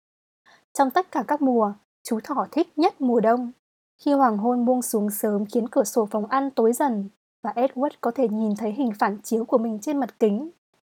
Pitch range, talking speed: 220-275 Hz, 210 wpm